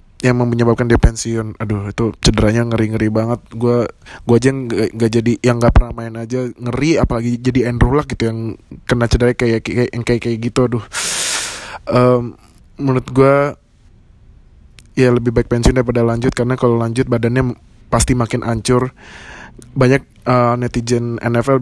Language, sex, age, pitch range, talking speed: Indonesian, male, 20-39, 115-125 Hz, 150 wpm